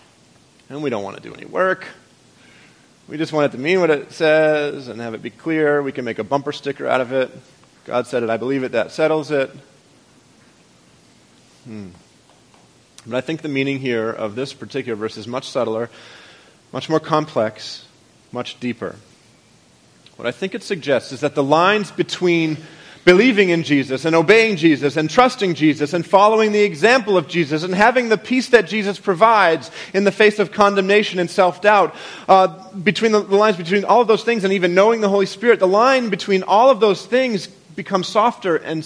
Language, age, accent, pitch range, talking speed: English, 30-49, American, 145-205 Hz, 190 wpm